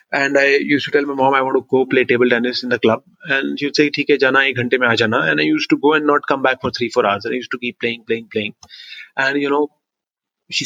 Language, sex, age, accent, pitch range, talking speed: English, male, 30-49, Indian, 130-155 Hz, 270 wpm